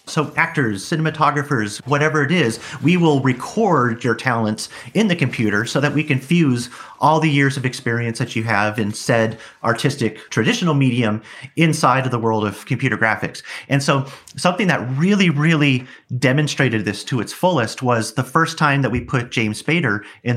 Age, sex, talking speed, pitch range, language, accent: 40-59, male, 175 wpm, 115-150 Hz, English, American